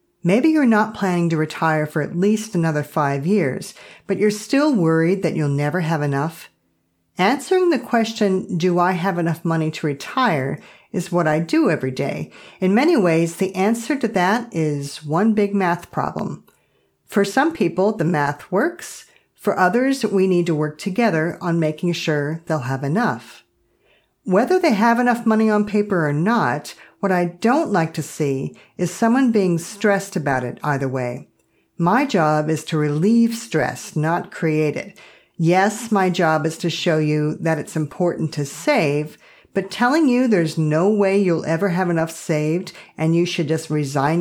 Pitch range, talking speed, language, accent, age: 155-205 Hz, 175 wpm, English, American, 50-69